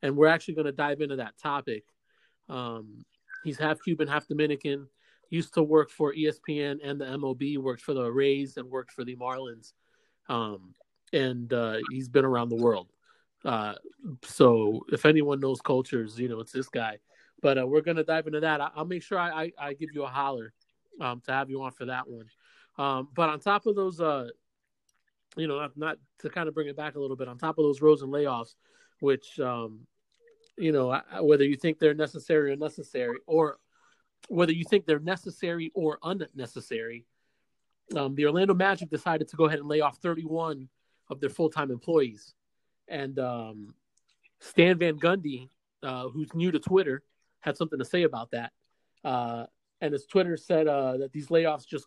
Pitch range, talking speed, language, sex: 130-160 Hz, 190 wpm, English, male